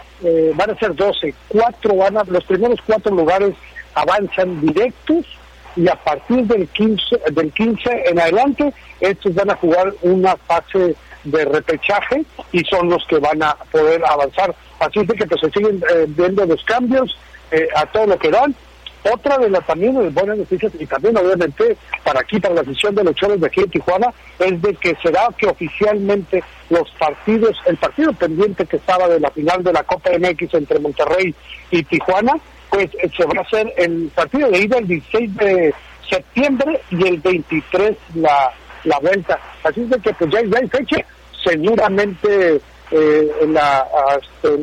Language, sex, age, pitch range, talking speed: Spanish, male, 60-79, 170-220 Hz, 175 wpm